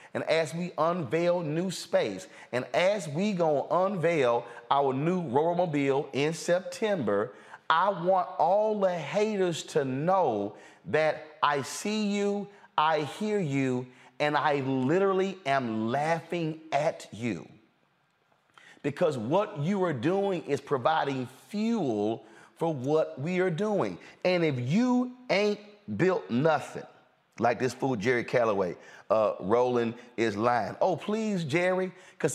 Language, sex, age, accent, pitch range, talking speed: English, male, 40-59, American, 150-210 Hz, 130 wpm